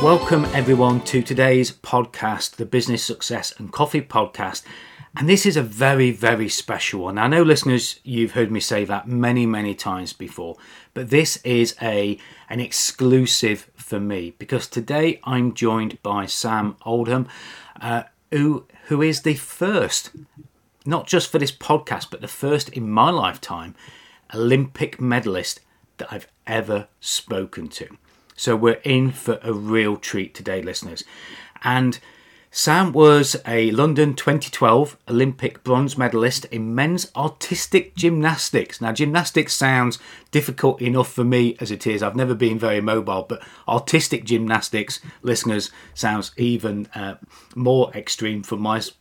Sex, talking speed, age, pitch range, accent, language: male, 145 wpm, 40-59, 110-145 Hz, British, English